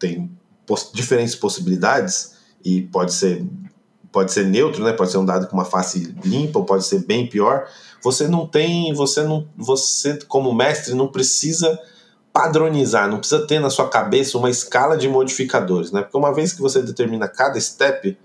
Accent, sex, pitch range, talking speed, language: Brazilian, male, 115-160 Hz, 180 wpm, Portuguese